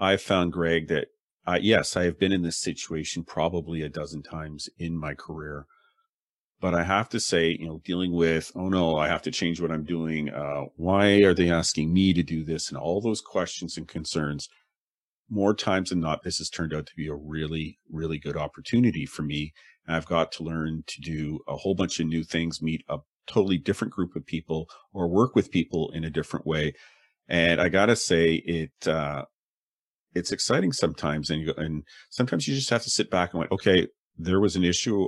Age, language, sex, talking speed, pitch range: 40-59, English, male, 210 wpm, 80-95 Hz